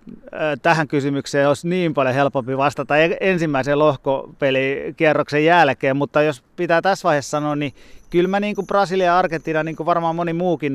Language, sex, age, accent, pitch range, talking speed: Finnish, male, 30-49, native, 135-170 Hz, 155 wpm